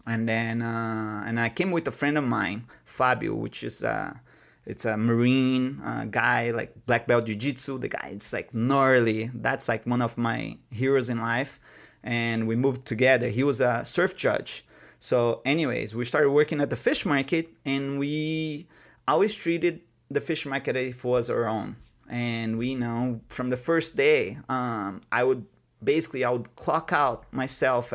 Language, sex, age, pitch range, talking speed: English, male, 30-49, 115-140 Hz, 175 wpm